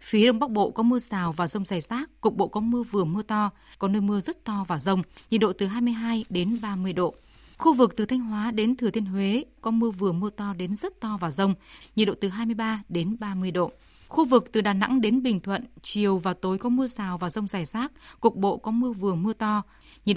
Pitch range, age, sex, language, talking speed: 195-235 Hz, 20-39, female, Vietnamese, 250 wpm